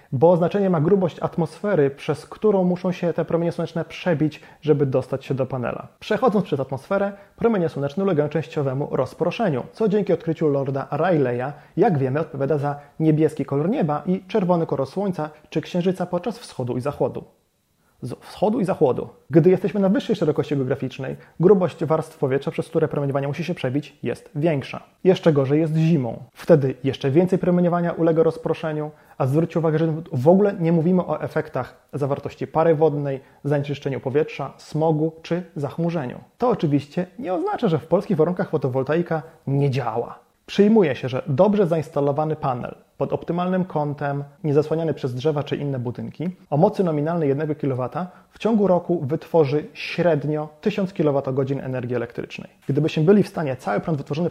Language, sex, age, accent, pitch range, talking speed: Polish, male, 30-49, native, 140-175 Hz, 160 wpm